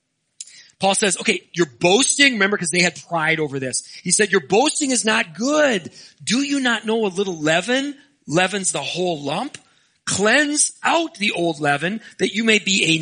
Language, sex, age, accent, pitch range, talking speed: English, male, 40-59, American, 150-200 Hz, 185 wpm